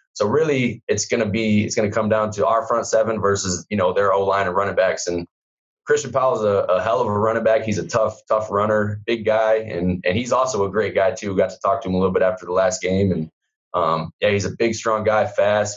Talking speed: 265 wpm